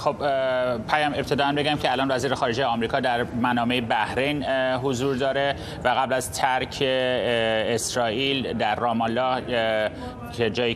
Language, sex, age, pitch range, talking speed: Persian, male, 30-49, 115-130 Hz, 135 wpm